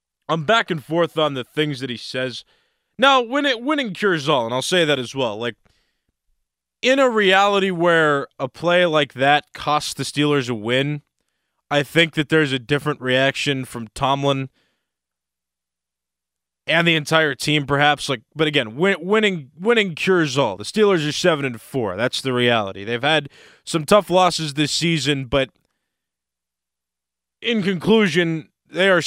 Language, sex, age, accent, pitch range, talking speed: English, male, 20-39, American, 130-170 Hz, 165 wpm